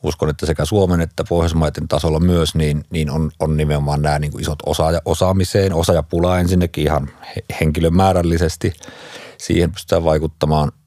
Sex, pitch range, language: male, 75-85 Hz, Finnish